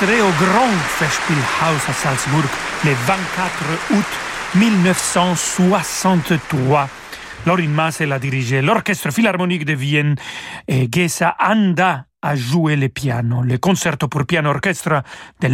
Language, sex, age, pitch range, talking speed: French, male, 40-59, 145-180 Hz, 110 wpm